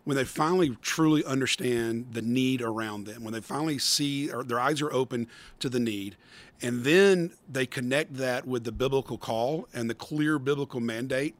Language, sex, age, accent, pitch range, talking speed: English, male, 40-59, American, 125-150 Hz, 185 wpm